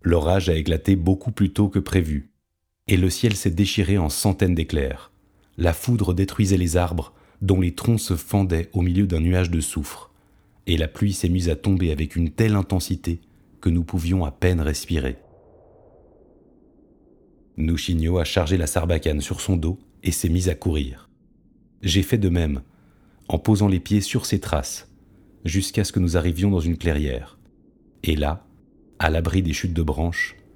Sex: male